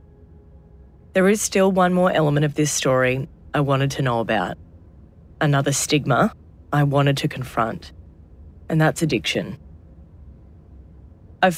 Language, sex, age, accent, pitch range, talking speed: English, female, 30-49, Australian, 95-155 Hz, 125 wpm